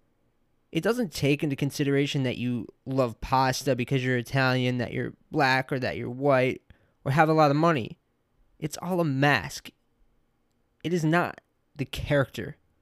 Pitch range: 120-160 Hz